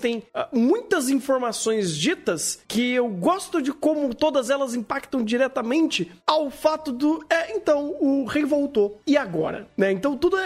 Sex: male